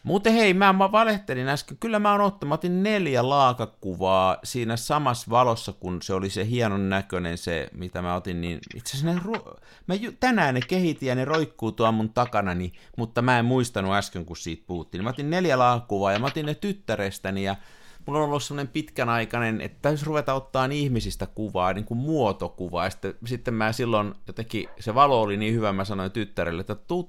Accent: native